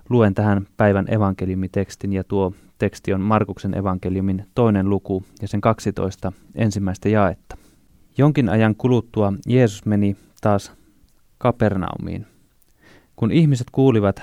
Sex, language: male, Finnish